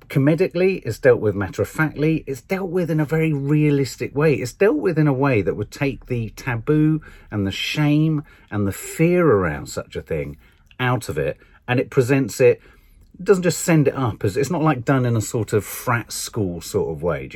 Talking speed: 215 wpm